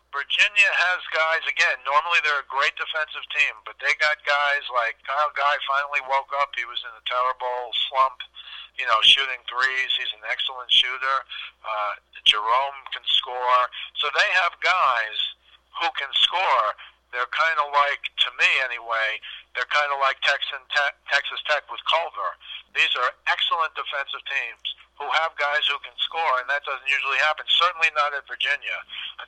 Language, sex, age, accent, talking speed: English, male, 50-69, American, 170 wpm